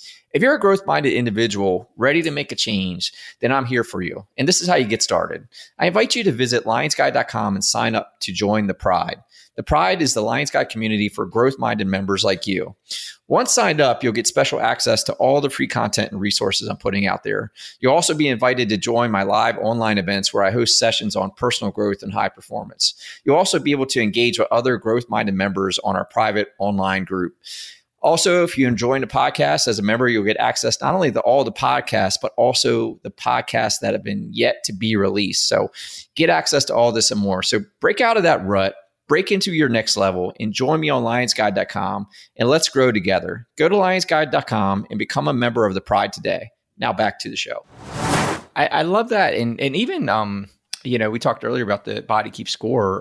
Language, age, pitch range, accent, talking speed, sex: English, 30-49, 100-135 Hz, American, 215 wpm, male